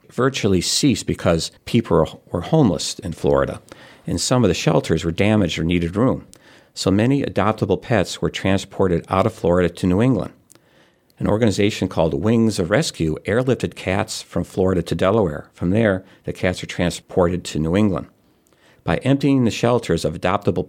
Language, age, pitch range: English, 50-69, 90-110 Hz